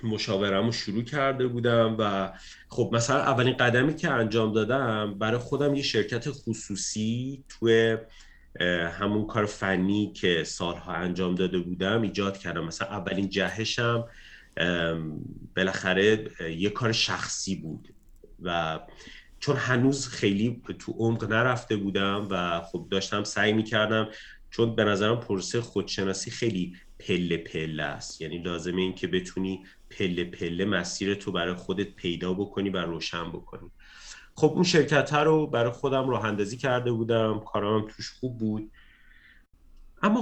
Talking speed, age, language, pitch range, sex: 135 wpm, 30-49, Persian, 95-120 Hz, male